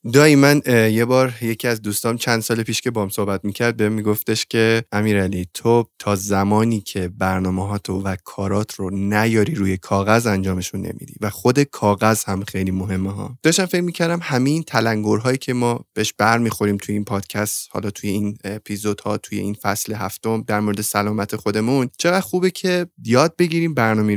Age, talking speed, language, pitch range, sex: 20-39, 185 wpm, Persian, 105-130 Hz, male